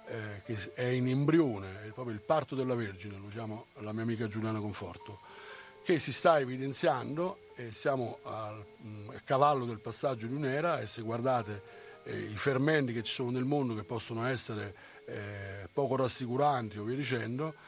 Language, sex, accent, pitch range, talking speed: Italian, male, native, 110-140 Hz, 175 wpm